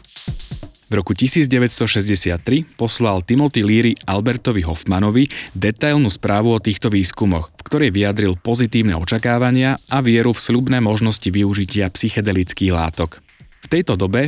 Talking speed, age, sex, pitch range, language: 120 wpm, 30-49, male, 95-125 Hz, Slovak